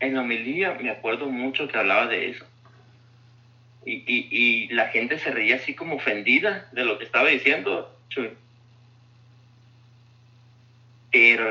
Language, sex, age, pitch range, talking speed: Spanish, male, 30-49, 120-140 Hz, 135 wpm